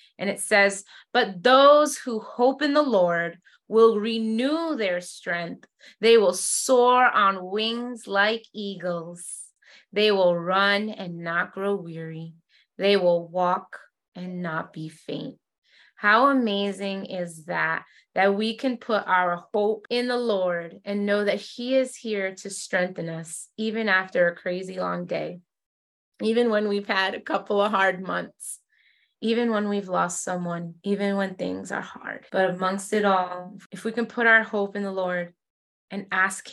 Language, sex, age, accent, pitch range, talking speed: English, female, 20-39, American, 175-210 Hz, 160 wpm